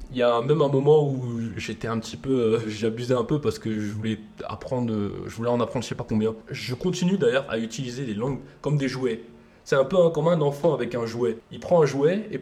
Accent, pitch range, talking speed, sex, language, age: French, 100-130 Hz, 250 wpm, male, French, 20-39